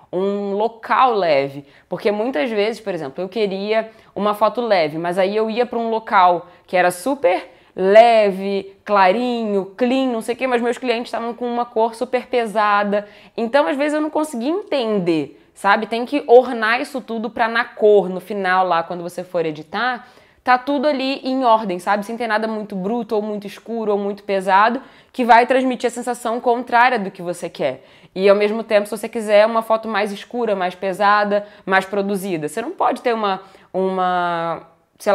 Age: 10-29